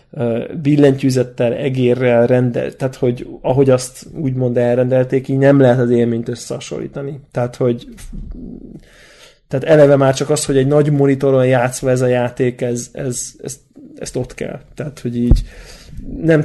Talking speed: 135 wpm